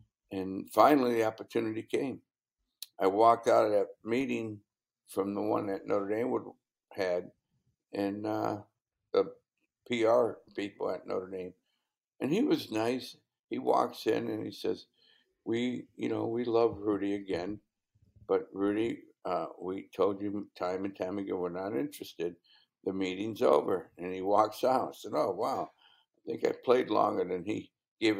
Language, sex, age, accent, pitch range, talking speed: English, male, 60-79, American, 100-125 Hz, 160 wpm